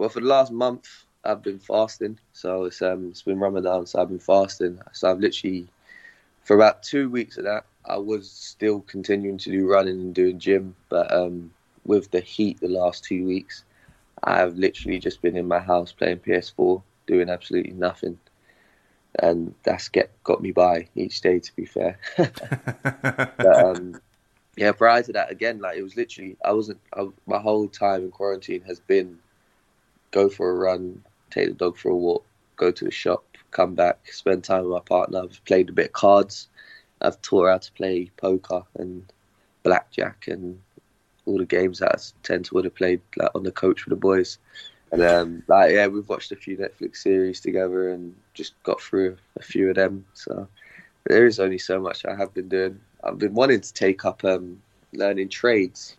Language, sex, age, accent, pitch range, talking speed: English, male, 20-39, British, 90-100 Hz, 195 wpm